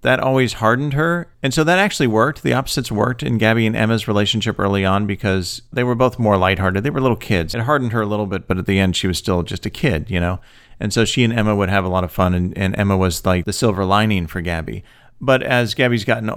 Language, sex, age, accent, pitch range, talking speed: English, male, 40-59, American, 95-125 Hz, 265 wpm